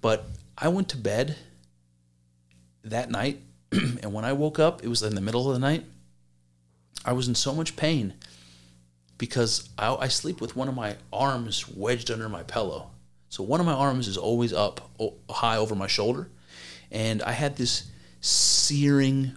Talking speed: 175 wpm